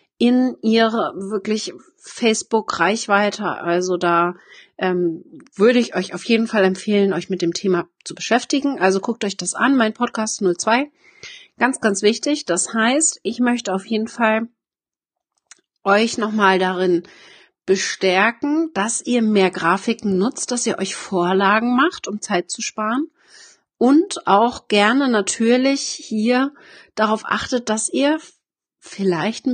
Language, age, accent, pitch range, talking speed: German, 40-59, German, 190-245 Hz, 140 wpm